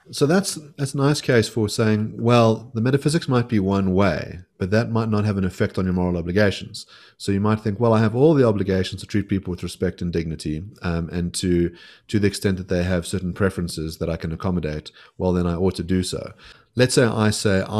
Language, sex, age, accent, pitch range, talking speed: English, male, 30-49, Australian, 90-115 Hz, 235 wpm